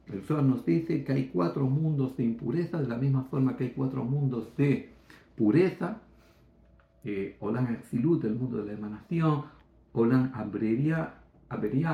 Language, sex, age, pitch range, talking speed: Greek, male, 60-79, 125-150 Hz, 145 wpm